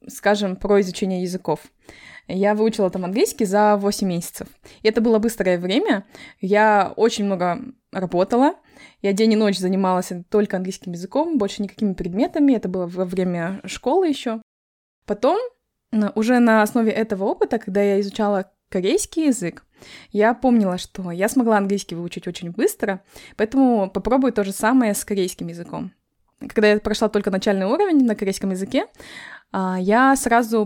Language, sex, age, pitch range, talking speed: Russian, female, 20-39, 190-225 Hz, 145 wpm